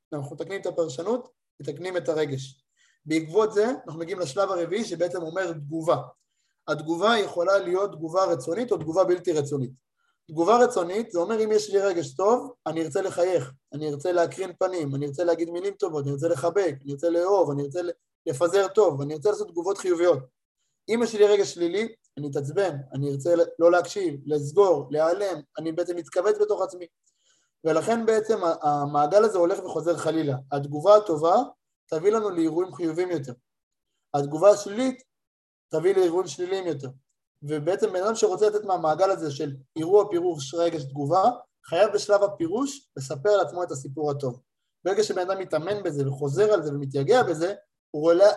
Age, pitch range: 20-39, 155-205 Hz